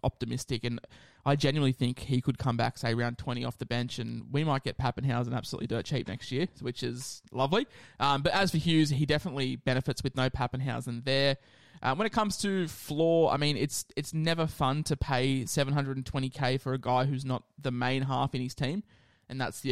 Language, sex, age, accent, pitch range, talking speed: English, male, 20-39, Australian, 125-145 Hz, 220 wpm